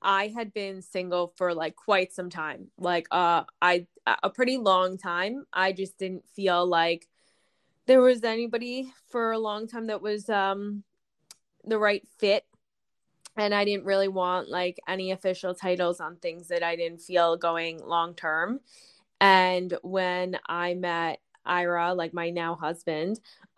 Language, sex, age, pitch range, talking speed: English, female, 20-39, 175-205 Hz, 155 wpm